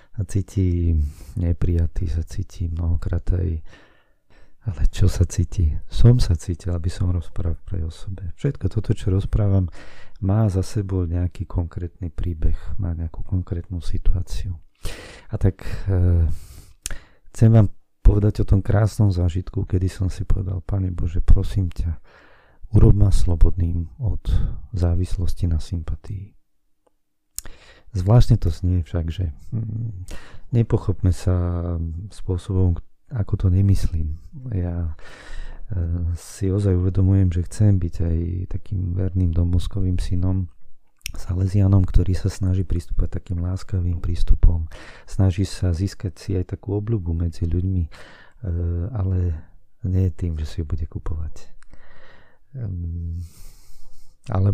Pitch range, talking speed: 85-100 Hz, 120 wpm